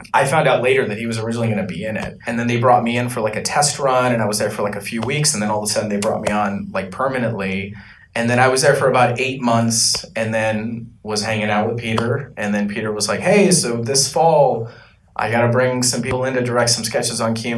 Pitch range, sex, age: 105-130 Hz, male, 20-39